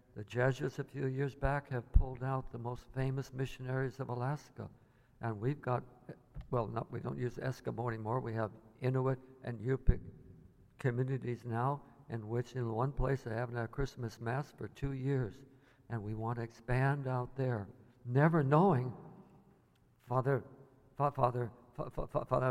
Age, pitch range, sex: 60-79, 125-155 Hz, male